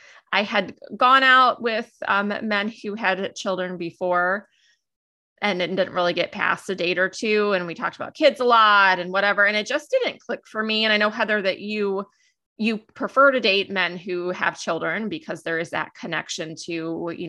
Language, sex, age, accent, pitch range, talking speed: English, female, 20-39, American, 170-215 Hz, 200 wpm